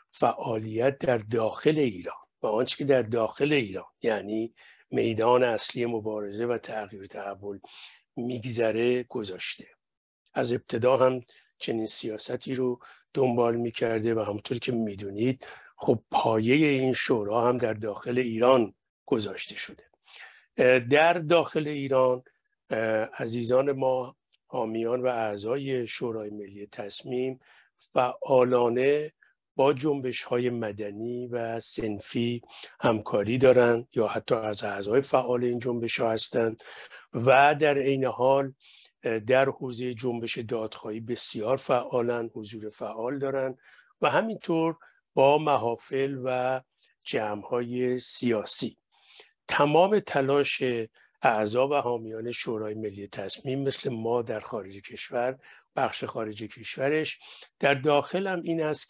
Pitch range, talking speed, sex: 115-135 Hz, 110 wpm, male